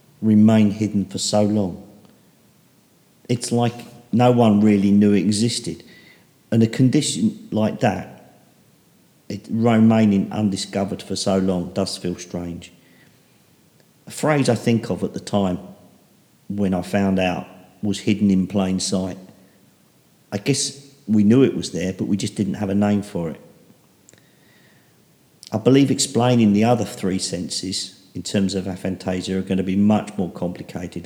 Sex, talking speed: male, 150 wpm